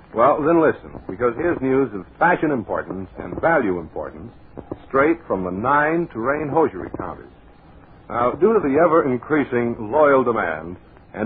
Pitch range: 110-155 Hz